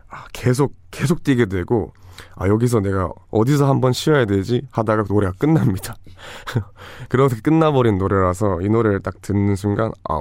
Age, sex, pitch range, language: 20-39, male, 90-110 Hz, Korean